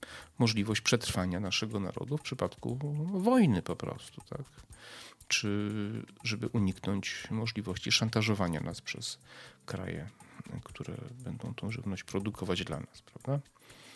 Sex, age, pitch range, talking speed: male, 40-59, 95-115 Hz, 110 wpm